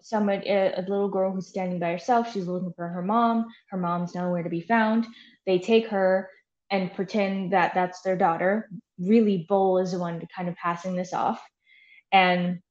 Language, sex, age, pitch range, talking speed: English, female, 10-29, 180-210 Hz, 195 wpm